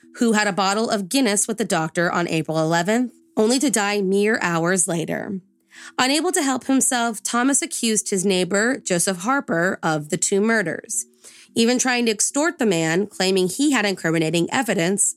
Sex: female